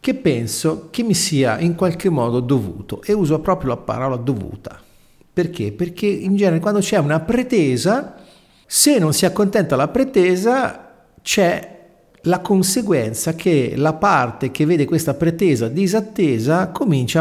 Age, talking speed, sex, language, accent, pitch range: 50-69, 145 wpm, male, Italian, native, 125-175 Hz